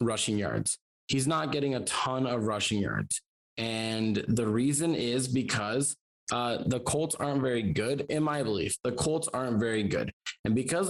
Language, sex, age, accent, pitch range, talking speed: English, male, 20-39, American, 120-155 Hz, 170 wpm